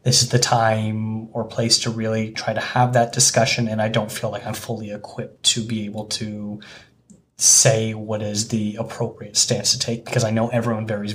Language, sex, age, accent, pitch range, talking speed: English, male, 20-39, American, 115-135 Hz, 205 wpm